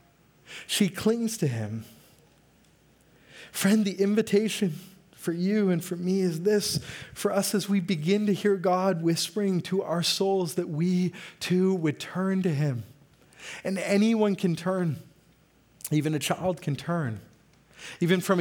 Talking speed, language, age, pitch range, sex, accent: 145 wpm, English, 30-49, 140-185 Hz, male, American